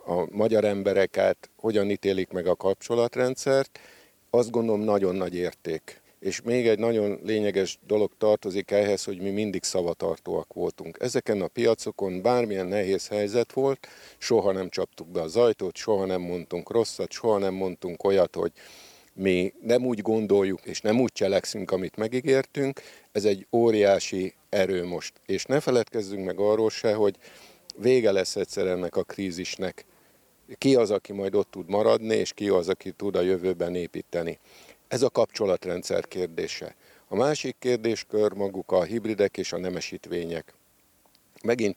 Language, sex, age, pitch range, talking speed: Hungarian, male, 50-69, 90-110 Hz, 150 wpm